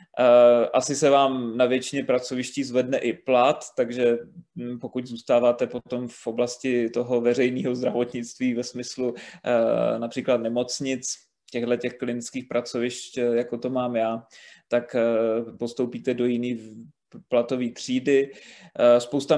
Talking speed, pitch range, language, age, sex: 110 wpm, 120-130 Hz, Czech, 20-39, male